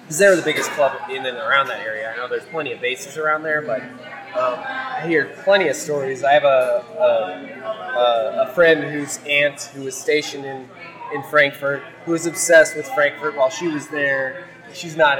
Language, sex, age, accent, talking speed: English, male, 20-39, American, 195 wpm